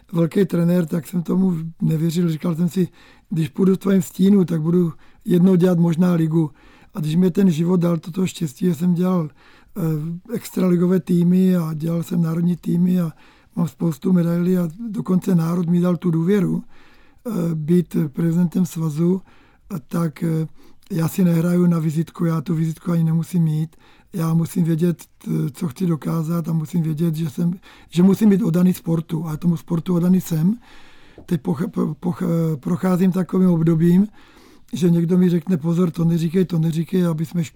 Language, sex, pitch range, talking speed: Czech, male, 165-185 Hz, 165 wpm